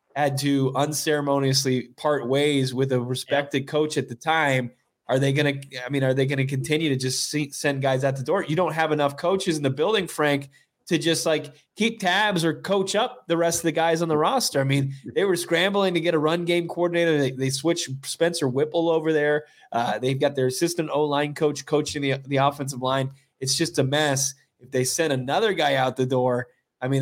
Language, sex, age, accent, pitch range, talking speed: English, male, 20-39, American, 135-155 Hz, 220 wpm